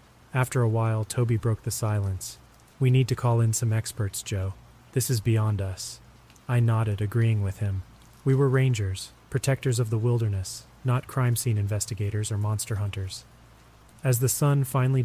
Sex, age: male, 30-49